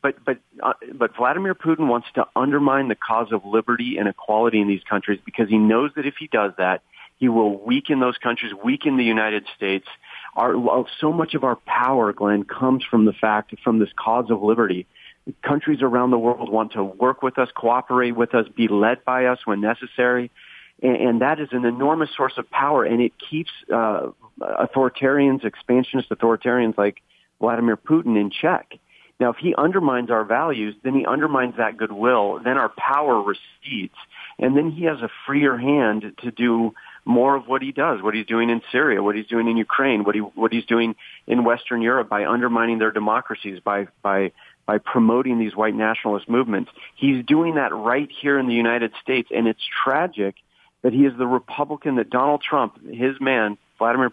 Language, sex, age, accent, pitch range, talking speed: English, male, 40-59, American, 110-135 Hz, 185 wpm